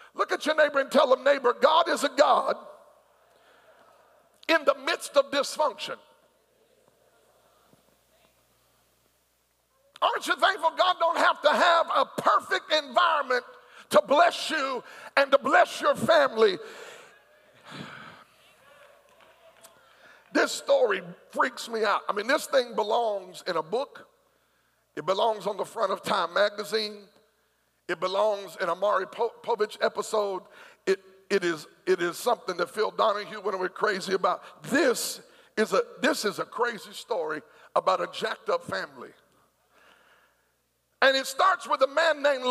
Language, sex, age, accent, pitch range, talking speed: English, male, 50-69, American, 220-320 Hz, 135 wpm